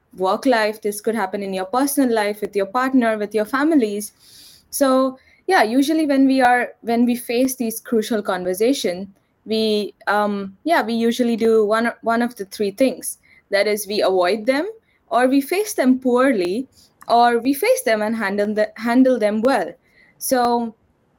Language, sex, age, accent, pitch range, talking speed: English, female, 20-39, Indian, 205-255 Hz, 170 wpm